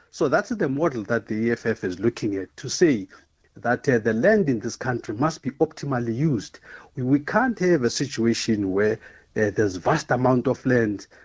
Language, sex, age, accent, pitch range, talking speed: English, male, 50-69, South African, 120-170 Hz, 190 wpm